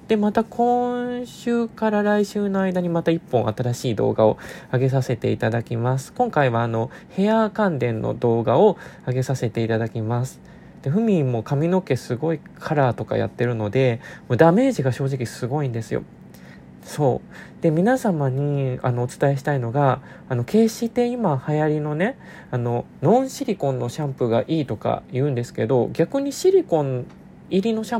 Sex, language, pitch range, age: male, Japanese, 120-190 Hz, 20-39